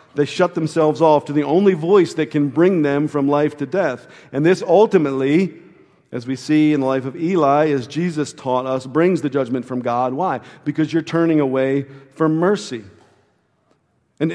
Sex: male